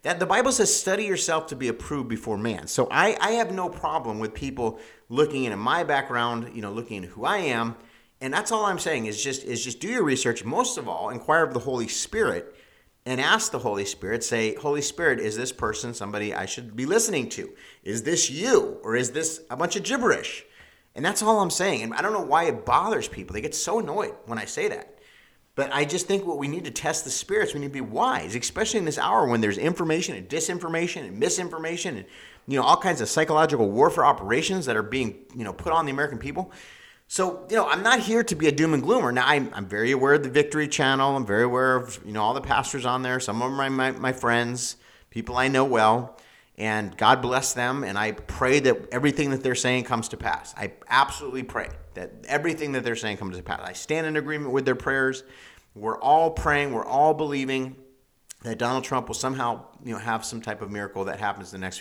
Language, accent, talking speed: English, American, 235 wpm